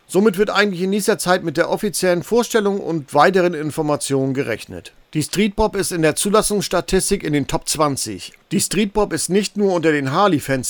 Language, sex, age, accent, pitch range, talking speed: German, male, 50-69, German, 145-200 Hz, 180 wpm